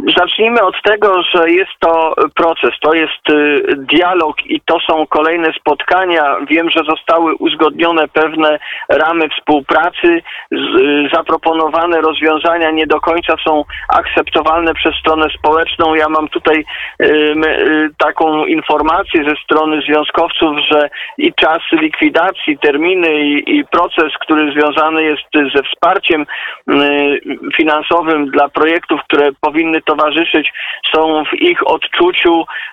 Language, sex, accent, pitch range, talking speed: Polish, male, native, 155-180 Hz, 115 wpm